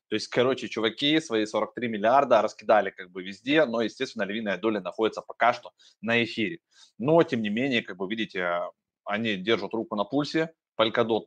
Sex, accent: male, native